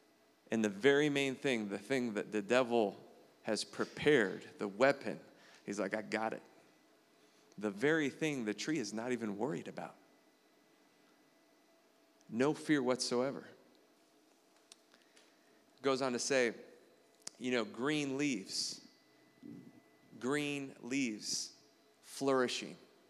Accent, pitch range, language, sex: American, 110-135 Hz, English, male